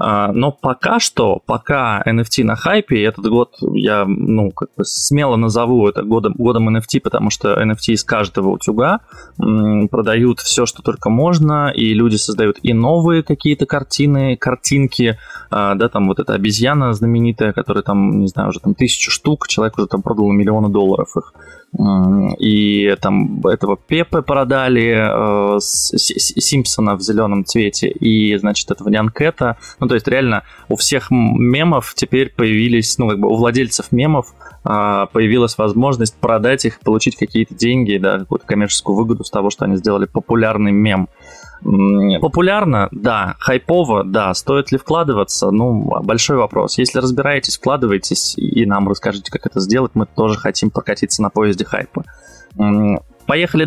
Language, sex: Russian, male